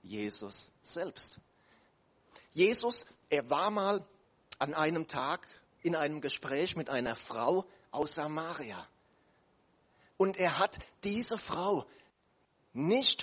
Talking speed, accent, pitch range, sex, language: 105 wpm, German, 140-200 Hz, male, German